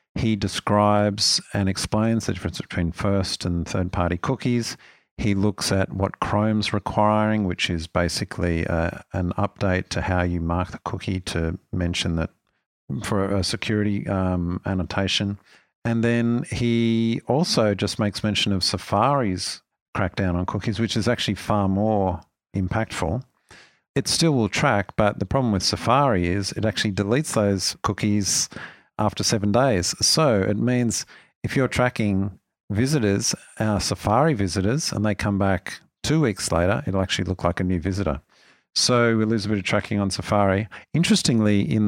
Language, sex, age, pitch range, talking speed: English, male, 50-69, 95-115 Hz, 155 wpm